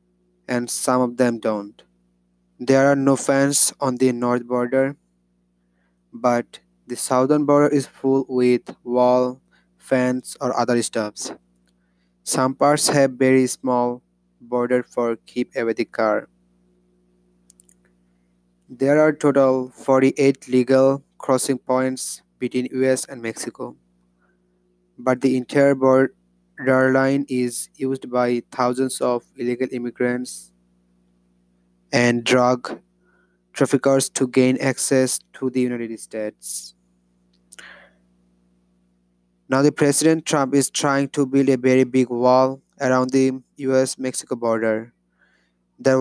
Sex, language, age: male, English, 20-39